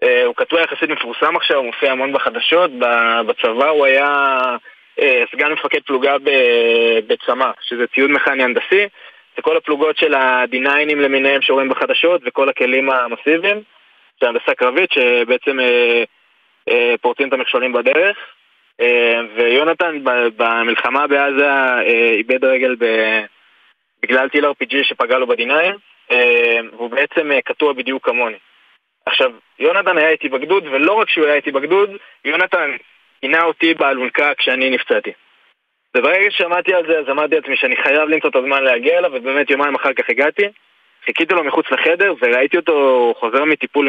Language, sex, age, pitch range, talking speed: Hebrew, male, 20-39, 130-210 Hz, 135 wpm